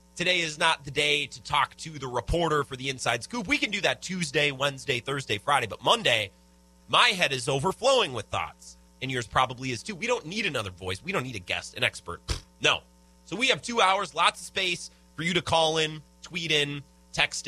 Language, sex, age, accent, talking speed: English, male, 30-49, American, 220 wpm